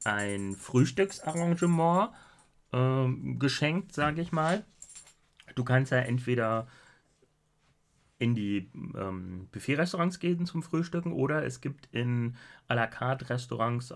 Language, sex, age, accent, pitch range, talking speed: German, male, 30-49, German, 120-155 Hz, 110 wpm